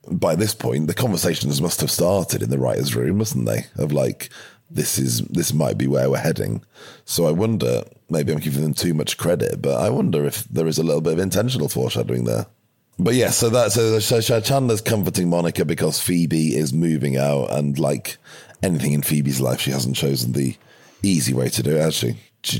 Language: English